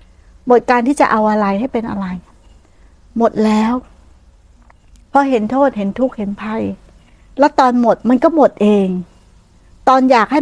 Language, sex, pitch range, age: Thai, female, 205-260 Hz, 60-79